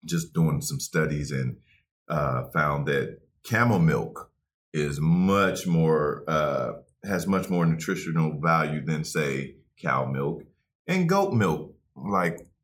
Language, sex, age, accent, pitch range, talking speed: English, male, 40-59, American, 70-90 Hz, 130 wpm